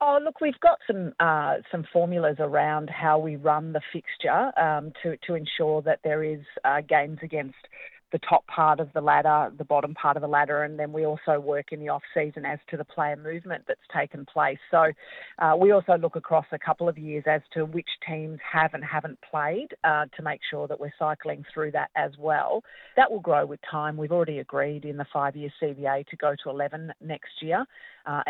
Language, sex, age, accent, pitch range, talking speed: English, female, 40-59, Australian, 150-165 Hz, 210 wpm